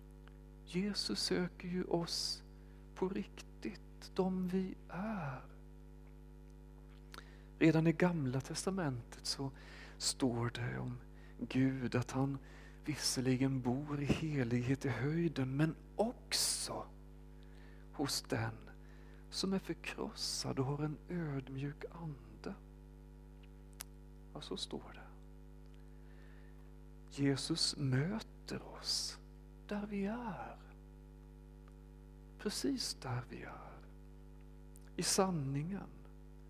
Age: 40-59